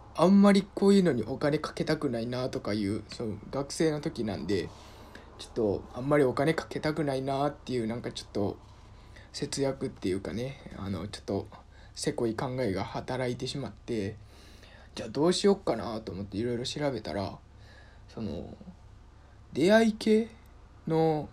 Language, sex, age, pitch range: Japanese, male, 20-39, 105-155 Hz